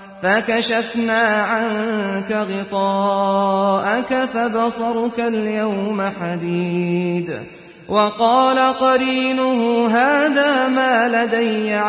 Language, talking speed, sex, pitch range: English, 55 wpm, male, 195-235 Hz